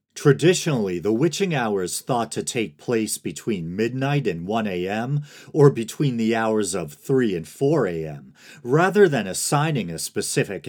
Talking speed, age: 150 wpm, 40-59